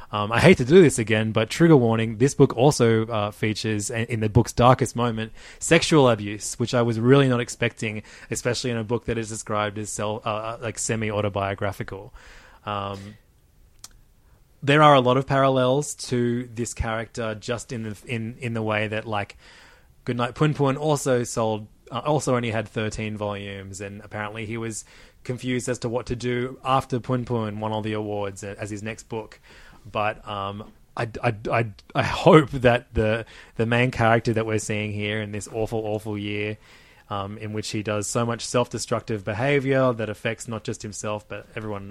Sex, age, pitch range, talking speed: male, 20-39, 105-125 Hz, 185 wpm